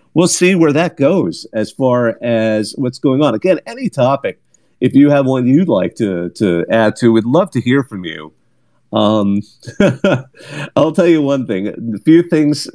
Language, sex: English, male